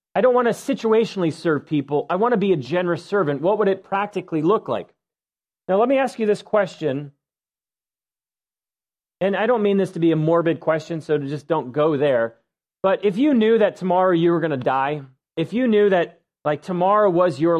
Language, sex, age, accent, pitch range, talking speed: English, male, 30-49, American, 165-220 Hz, 210 wpm